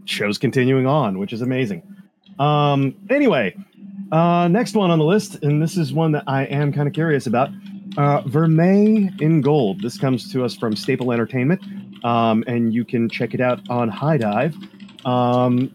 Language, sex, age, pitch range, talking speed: English, male, 30-49, 135-200 Hz, 180 wpm